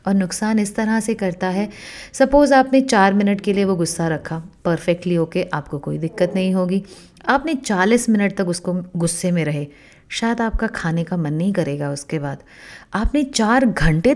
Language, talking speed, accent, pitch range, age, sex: Hindi, 180 wpm, native, 170-215 Hz, 30-49, female